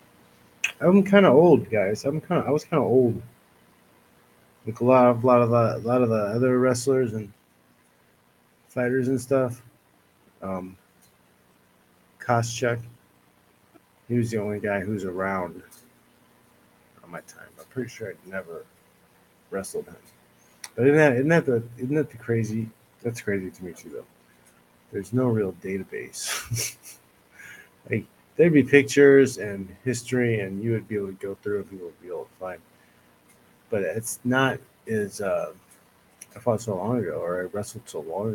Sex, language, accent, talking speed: male, English, American, 165 wpm